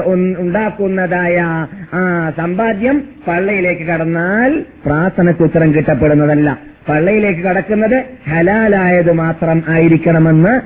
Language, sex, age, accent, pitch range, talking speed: Malayalam, male, 30-49, native, 135-175 Hz, 75 wpm